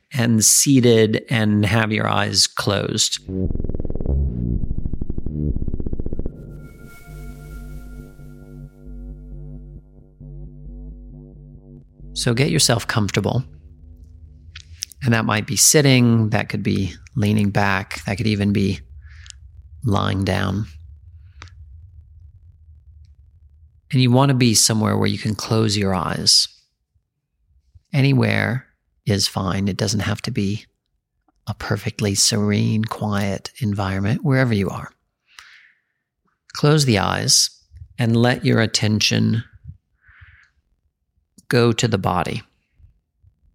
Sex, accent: male, American